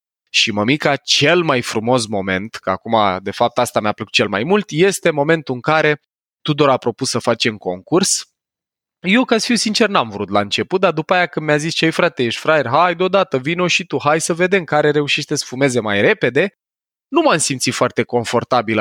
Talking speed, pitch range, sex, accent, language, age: 205 wpm, 115-185 Hz, male, native, Romanian, 20-39